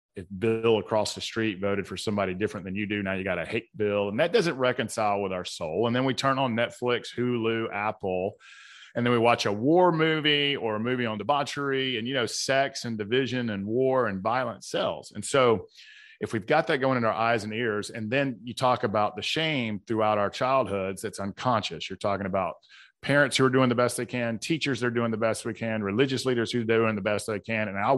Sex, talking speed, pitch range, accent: male, 235 wpm, 105-130 Hz, American